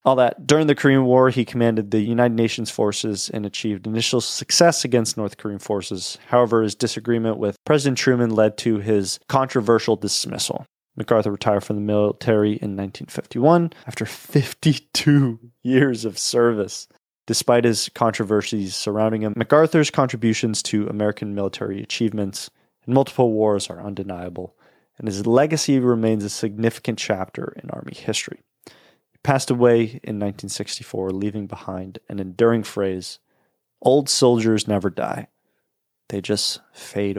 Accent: American